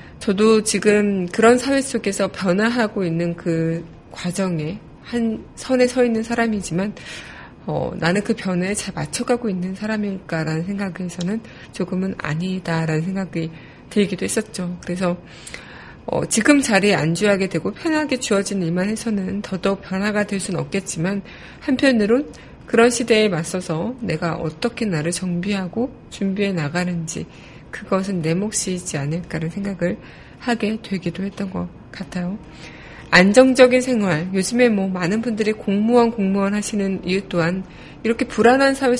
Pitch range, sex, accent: 180-220 Hz, female, native